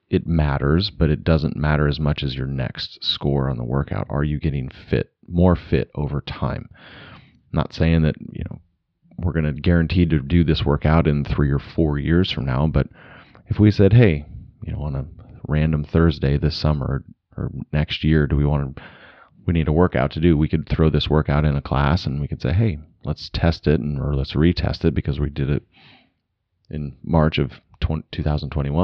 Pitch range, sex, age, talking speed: 75-85 Hz, male, 30-49, 210 wpm